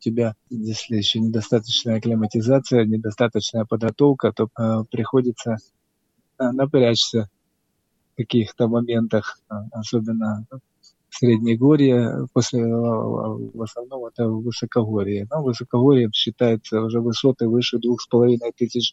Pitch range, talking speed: 115-125 Hz, 110 wpm